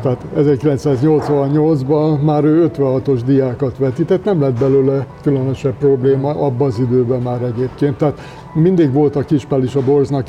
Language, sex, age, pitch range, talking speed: Hungarian, male, 60-79, 130-145 Hz, 145 wpm